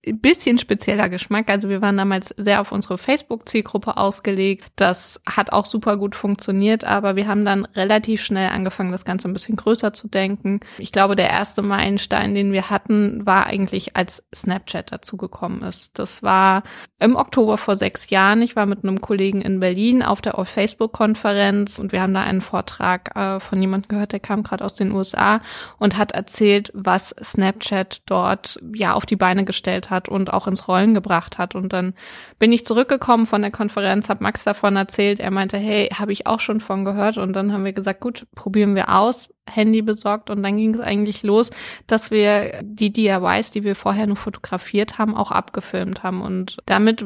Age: 20-39